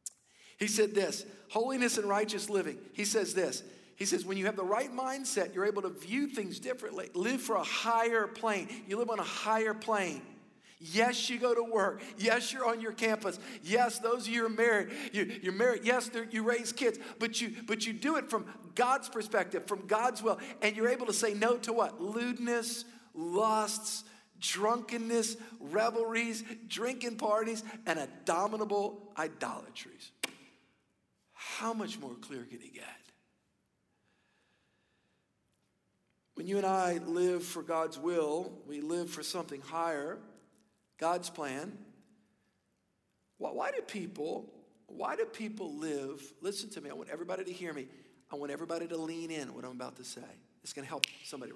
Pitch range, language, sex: 185-230 Hz, English, male